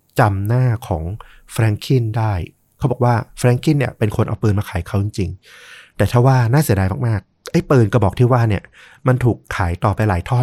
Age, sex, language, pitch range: 30-49, male, Thai, 95-120 Hz